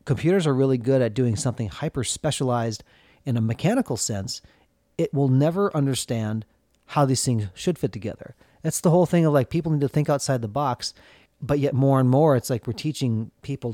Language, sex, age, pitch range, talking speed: English, male, 40-59, 110-140 Hz, 200 wpm